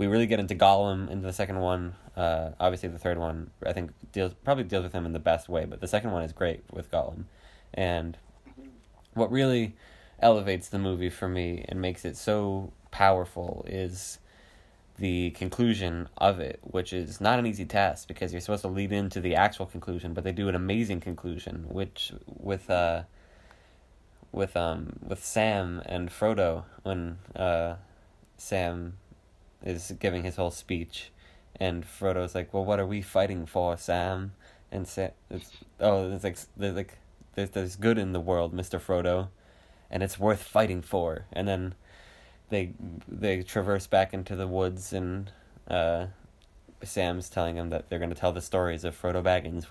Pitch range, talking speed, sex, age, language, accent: 85-100 Hz, 175 wpm, male, 20-39, English, American